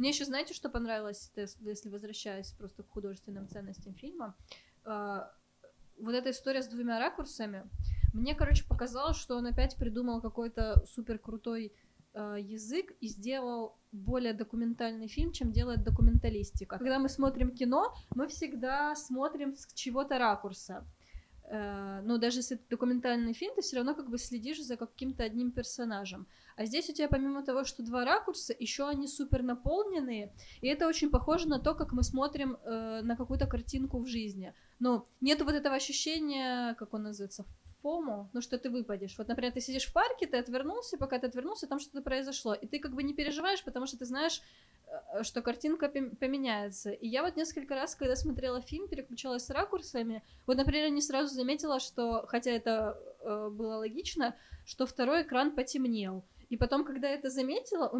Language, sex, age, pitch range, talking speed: Russian, female, 20-39, 230-285 Hz, 170 wpm